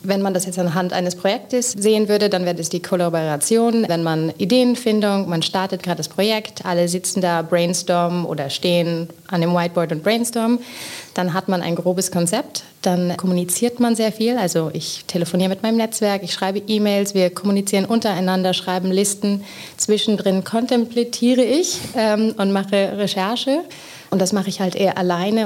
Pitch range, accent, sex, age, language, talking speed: 170-200 Hz, German, female, 30-49, German, 170 wpm